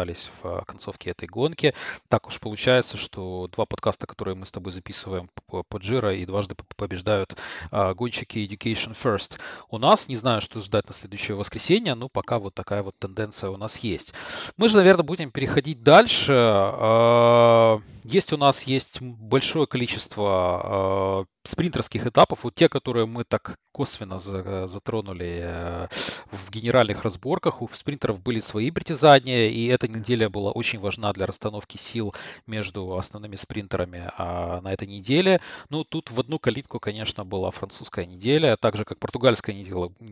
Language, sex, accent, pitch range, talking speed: Russian, male, native, 95-120 Hz, 155 wpm